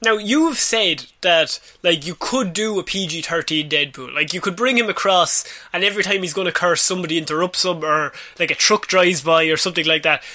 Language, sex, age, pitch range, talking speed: English, male, 20-39, 165-210 Hz, 215 wpm